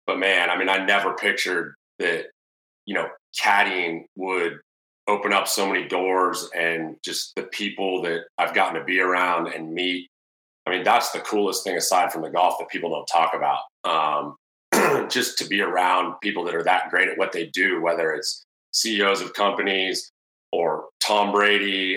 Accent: American